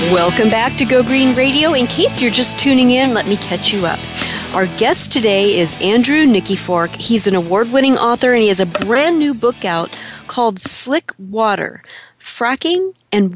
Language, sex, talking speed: English, female, 180 wpm